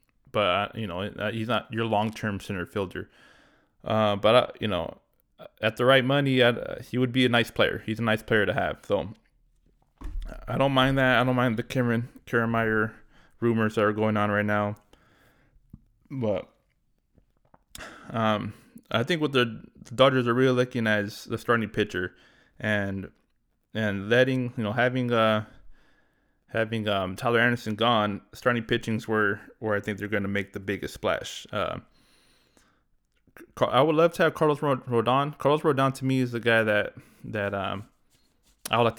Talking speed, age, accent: 170 wpm, 20-39, American